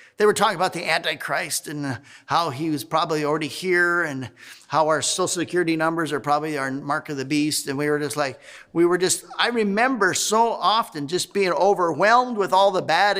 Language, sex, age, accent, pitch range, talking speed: English, male, 50-69, American, 145-195 Hz, 205 wpm